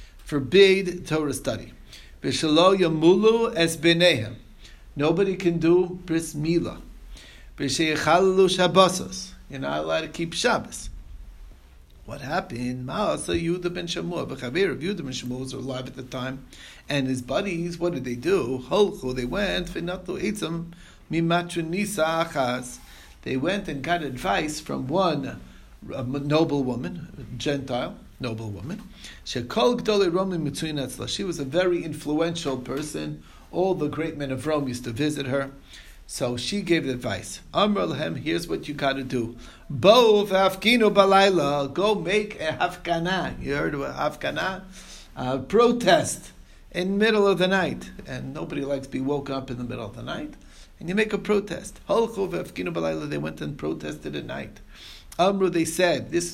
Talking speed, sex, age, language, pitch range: 140 wpm, male, 60-79, English, 125-180 Hz